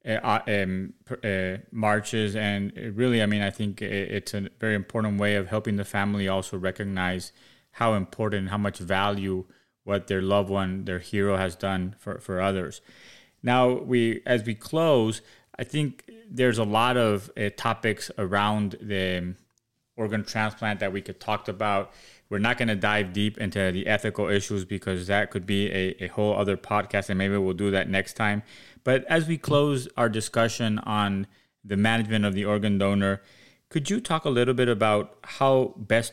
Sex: male